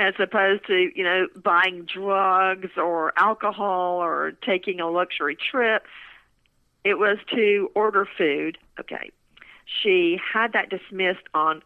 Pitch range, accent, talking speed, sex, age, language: 175-230 Hz, American, 130 wpm, female, 50-69, English